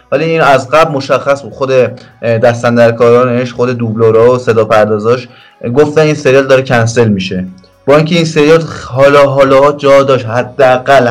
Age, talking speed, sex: 20-39, 145 wpm, male